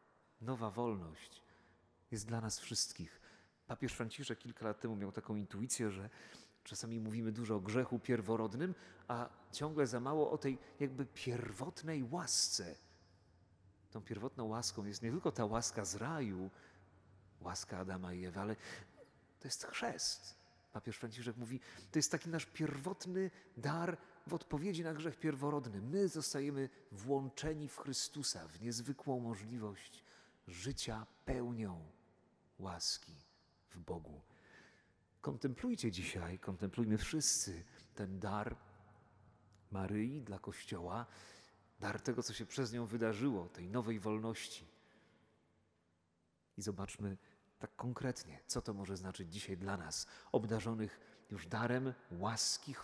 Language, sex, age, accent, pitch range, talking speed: Polish, male, 40-59, native, 100-130 Hz, 125 wpm